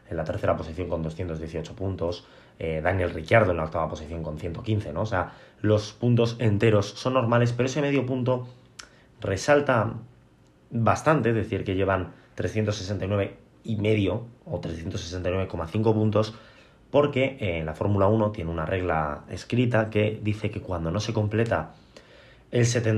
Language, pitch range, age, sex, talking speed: Spanish, 90-115 Hz, 20-39, male, 145 wpm